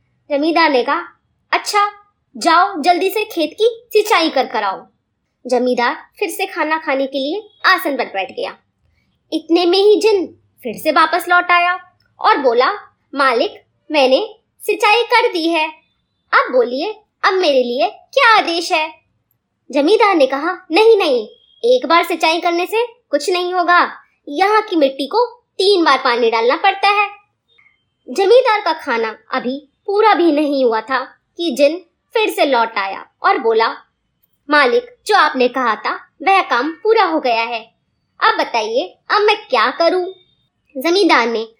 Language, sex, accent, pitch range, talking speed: Hindi, male, native, 275-415 Hz, 155 wpm